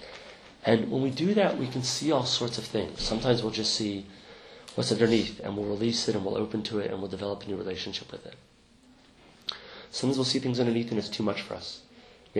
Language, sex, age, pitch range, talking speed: English, male, 30-49, 100-120 Hz, 225 wpm